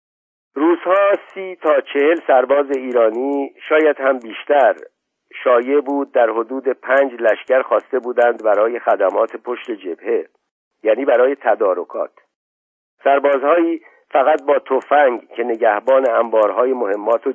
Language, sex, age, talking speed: Persian, male, 50-69, 115 wpm